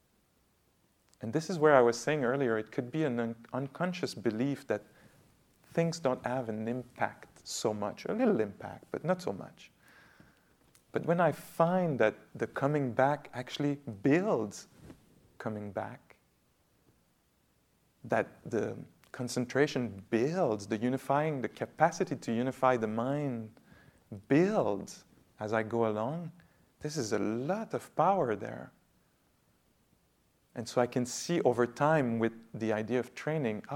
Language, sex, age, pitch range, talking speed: English, male, 40-59, 110-145 Hz, 135 wpm